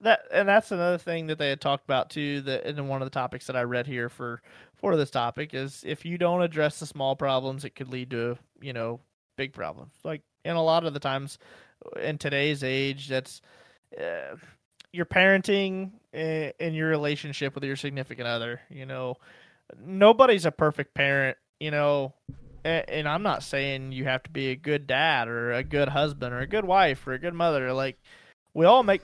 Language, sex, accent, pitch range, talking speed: English, male, American, 130-160 Hz, 205 wpm